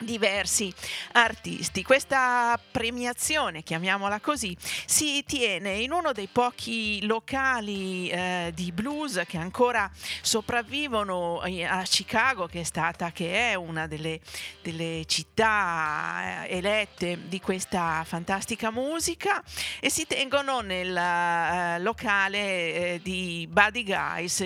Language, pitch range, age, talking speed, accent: Italian, 175-225 Hz, 40-59, 115 wpm, native